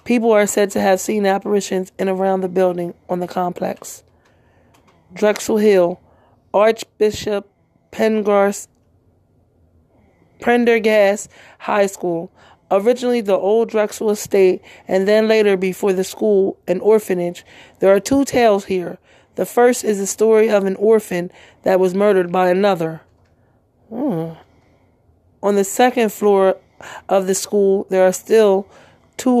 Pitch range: 185-215 Hz